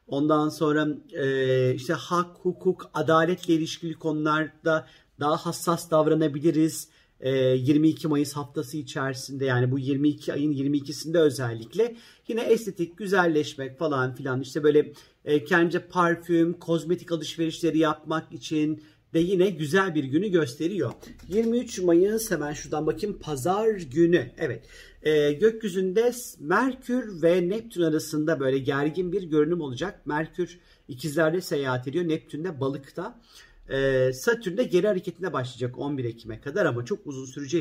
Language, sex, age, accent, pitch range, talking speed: Turkish, male, 50-69, native, 140-175 Hz, 130 wpm